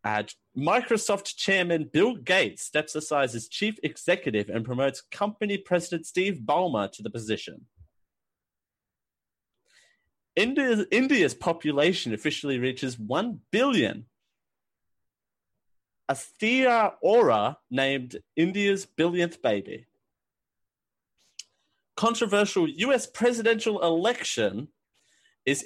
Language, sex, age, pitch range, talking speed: English, male, 30-49, 120-200 Hz, 90 wpm